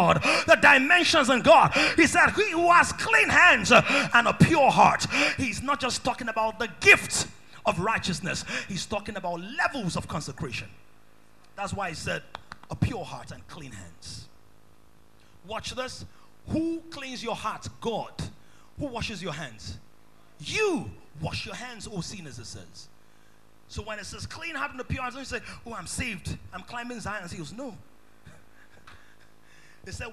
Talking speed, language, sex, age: 165 wpm, English, male, 30-49